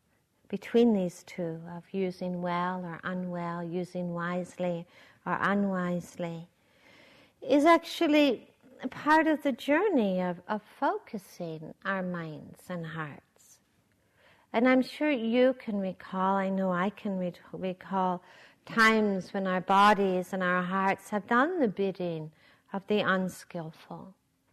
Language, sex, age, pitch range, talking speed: English, female, 60-79, 180-225 Hz, 120 wpm